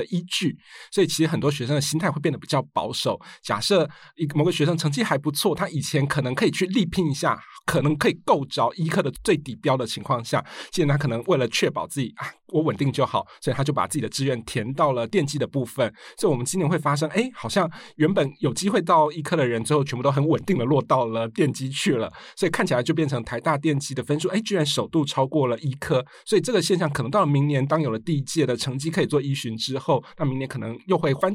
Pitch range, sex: 135-165 Hz, male